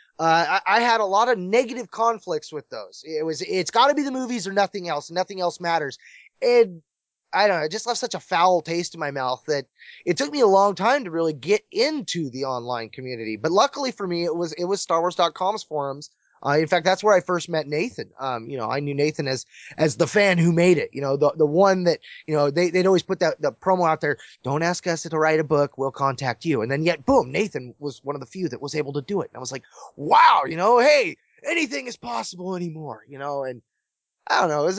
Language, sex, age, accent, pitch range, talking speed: English, male, 20-39, American, 145-200 Hz, 255 wpm